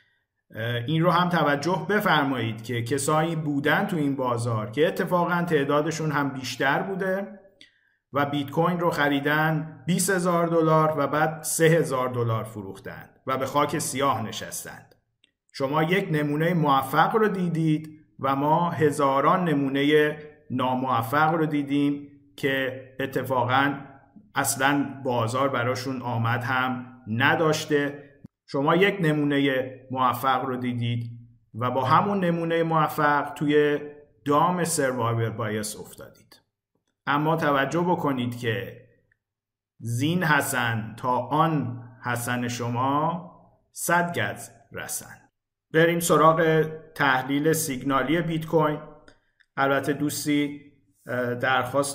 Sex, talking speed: male, 105 wpm